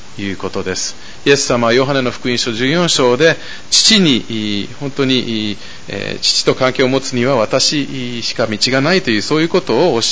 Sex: male